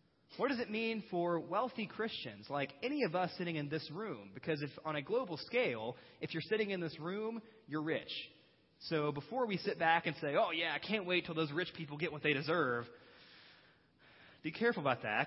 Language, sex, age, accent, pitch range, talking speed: English, male, 20-39, American, 150-215 Hz, 210 wpm